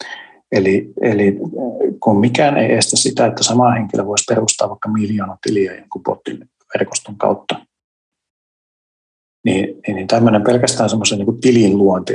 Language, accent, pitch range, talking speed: Finnish, native, 105-135 Hz, 140 wpm